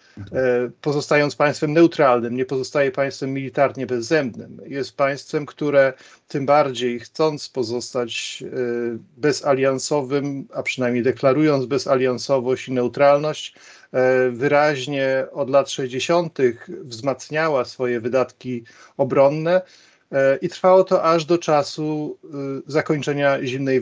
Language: Polish